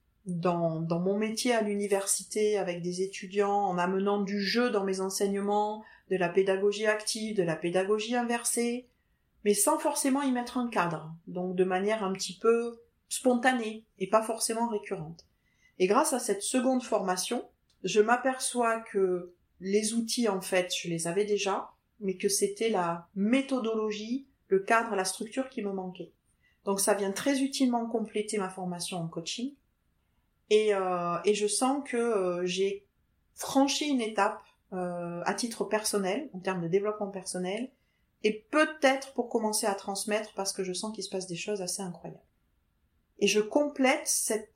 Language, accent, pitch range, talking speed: French, French, 190-235 Hz, 160 wpm